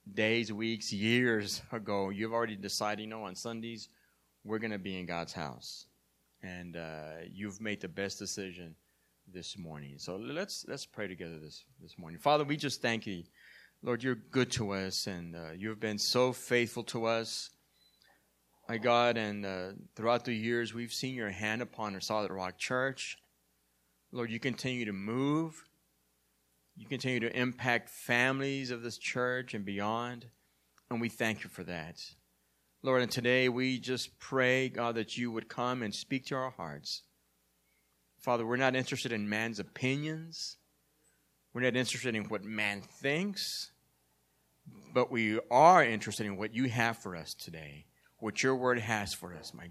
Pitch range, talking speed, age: 90-125 Hz, 170 wpm, 30-49